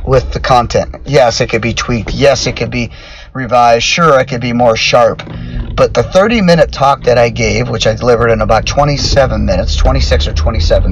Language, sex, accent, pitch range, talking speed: English, male, American, 75-110 Hz, 205 wpm